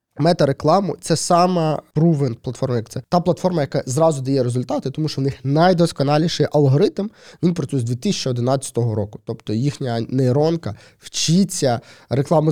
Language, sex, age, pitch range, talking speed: Ukrainian, male, 20-39, 120-150 Hz, 145 wpm